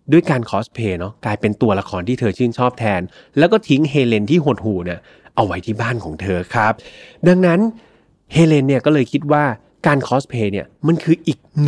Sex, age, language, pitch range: male, 30-49, Thai, 110-155 Hz